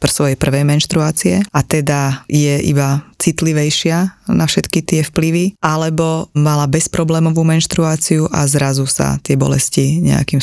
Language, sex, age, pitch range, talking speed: Slovak, female, 20-39, 140-155 Hz, 125 wpm